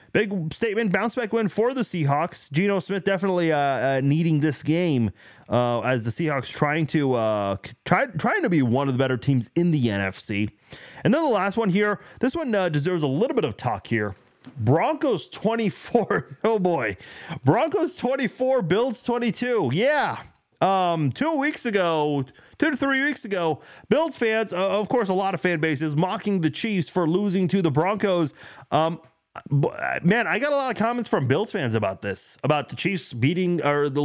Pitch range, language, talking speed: 135-200 Hz, English, 185 wpm